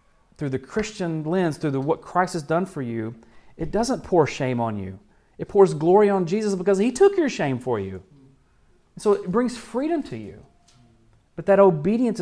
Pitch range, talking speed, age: 125-175 Hz, 190 wpm, 40-59